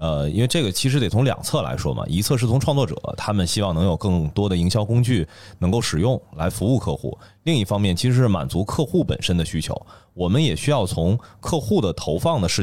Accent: native